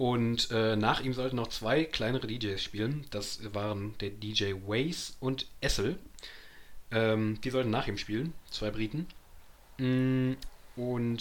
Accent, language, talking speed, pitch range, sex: German, German, 140 wpm, 105-120 Hz, male